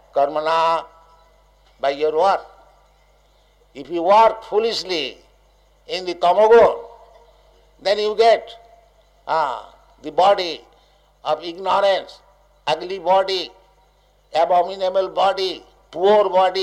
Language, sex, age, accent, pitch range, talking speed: English, male, 60-79, Indian, 180-225 Hz, 90 wpm